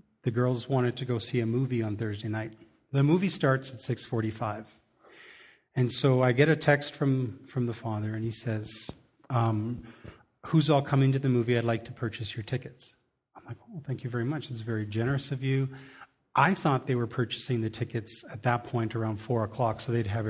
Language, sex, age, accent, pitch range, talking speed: English, male, 40-59, American, 120-145 Hz, 205 wpm